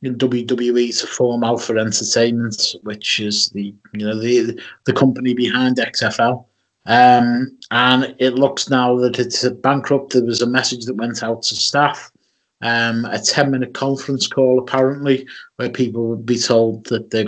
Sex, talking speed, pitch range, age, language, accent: male, 160 wpm, 120-145 Hz, 30-49, English, British